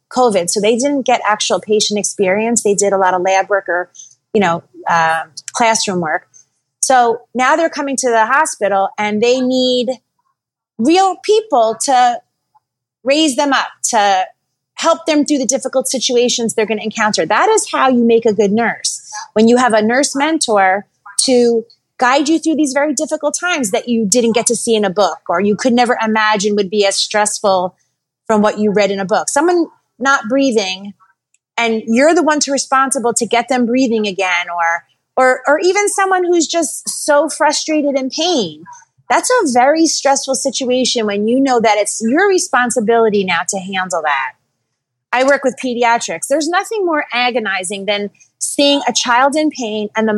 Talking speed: 180 wpm